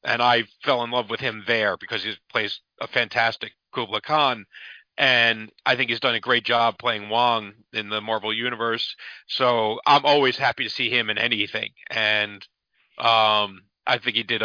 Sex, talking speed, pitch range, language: male, 185 wpm, 120-160 Hz, English